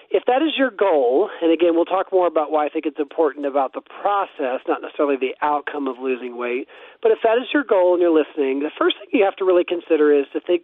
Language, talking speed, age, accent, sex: English, 260 wpm, 40-59, American, male